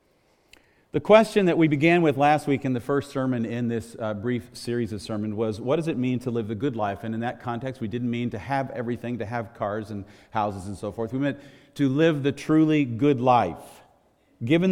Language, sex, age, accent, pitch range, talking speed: English, male, 40-59, American, 110-145 Hz, 230 wpm